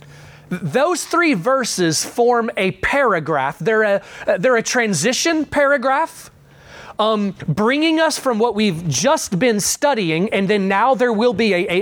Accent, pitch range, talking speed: American, 180-240 Hz, 140 wpm